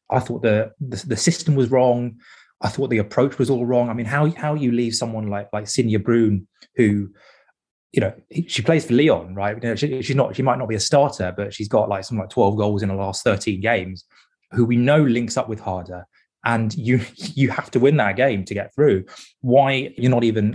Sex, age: male, 20-39